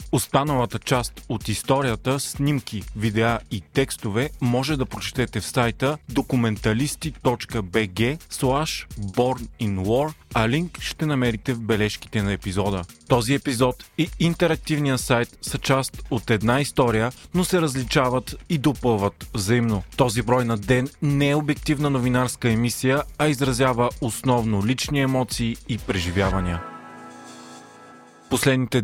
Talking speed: 120 wpm